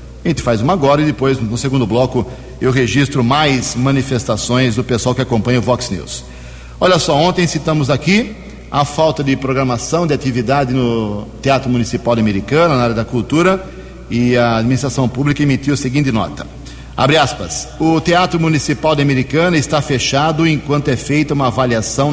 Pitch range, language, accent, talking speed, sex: 125-150 Hz, Portuguese, Brazilian, 170 wpm, male